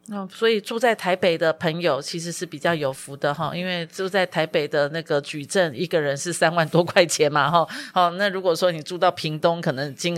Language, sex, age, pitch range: Chinese, female, 30-49, 165-195 Hz